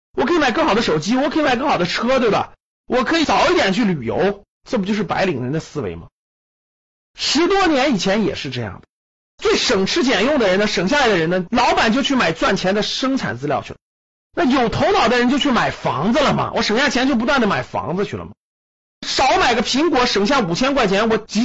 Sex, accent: male, native